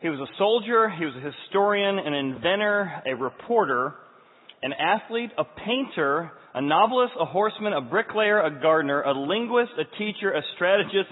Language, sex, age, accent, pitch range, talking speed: English, male, 40-59, American, 140-190 Hz, 160 wpm